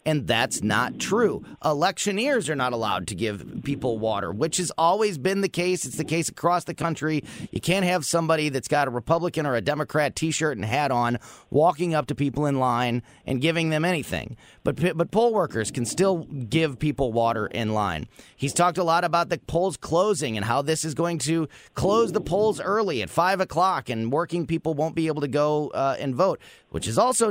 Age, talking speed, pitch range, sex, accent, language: 30-49, 210 wpm, 130-175 Hz, male, American, English